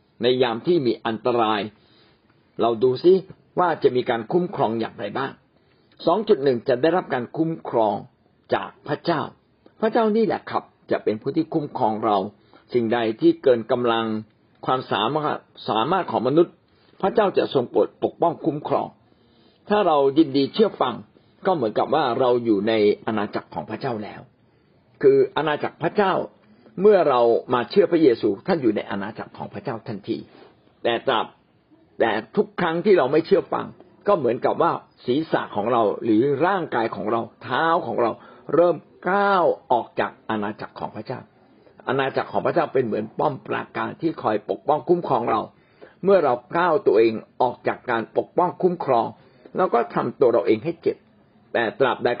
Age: 60-79